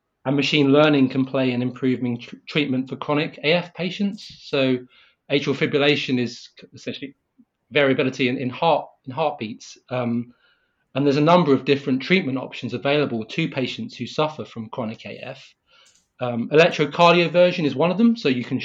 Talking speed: 150 wpm